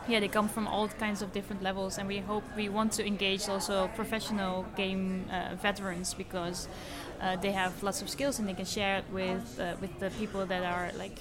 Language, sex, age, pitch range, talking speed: English, female, 20-39, 185-215 Hz, 220 wpm